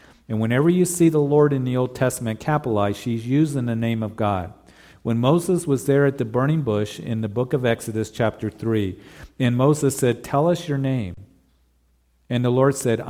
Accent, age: American, 50-69